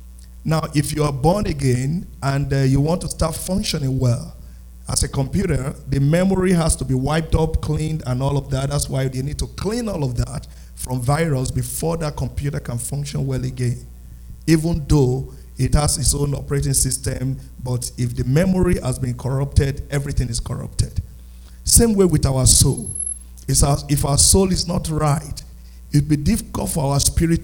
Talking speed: 180 wpm